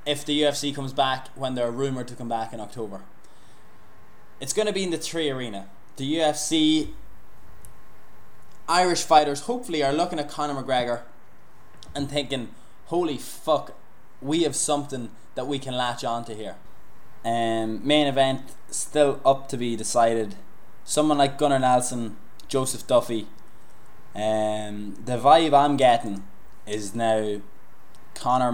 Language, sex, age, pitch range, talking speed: English, male, 10-29, 115-140 Hz, 140 wpm